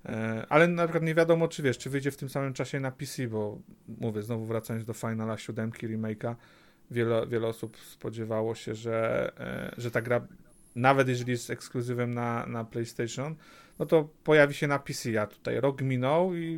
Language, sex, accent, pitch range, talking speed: Polish, male, native, 115-140 Hz, 175 wpm